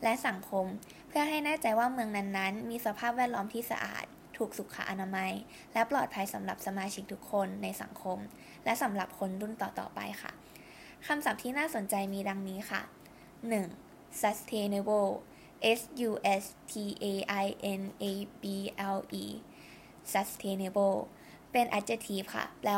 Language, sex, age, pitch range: Thai, female, 10-29, 195-230 Hz